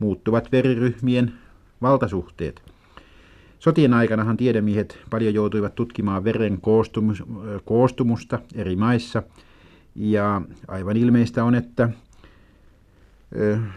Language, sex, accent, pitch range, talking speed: Finnish, male, native, 100-125 Hz, 85 wpm